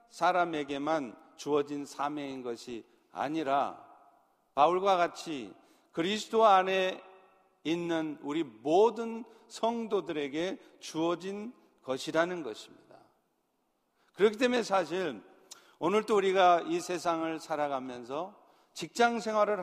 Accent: native